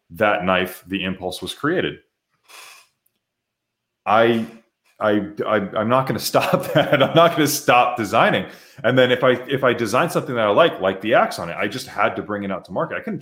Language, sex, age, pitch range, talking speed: English, male, 30-49, 95-130 Hz, 220 wpm